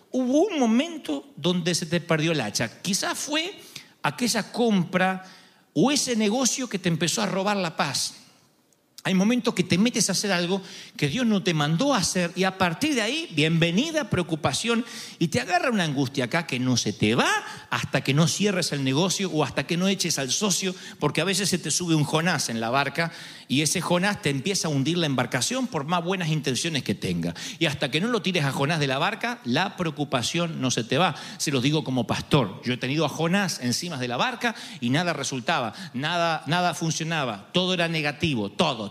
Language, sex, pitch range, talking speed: Spanish, male, 155-225 Hz, 210 wpm